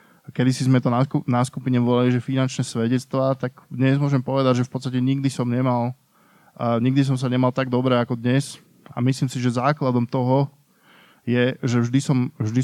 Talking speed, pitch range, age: 185 wpm, 125-135 Hz, 20-39